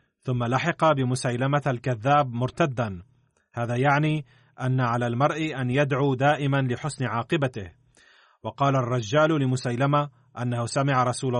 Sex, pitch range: male, 125-150 Hz